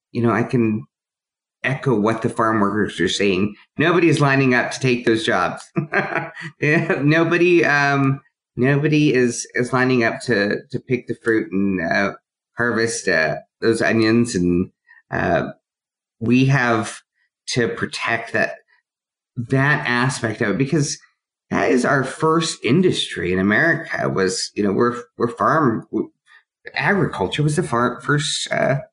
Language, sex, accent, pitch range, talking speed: English, male, American, 110-145 Hz, 145 wpm